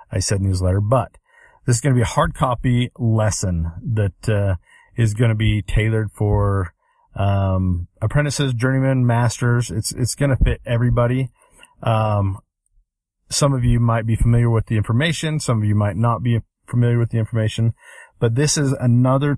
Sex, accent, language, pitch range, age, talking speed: male, American, English, 100-120 Hz, 40-59, 170 wpm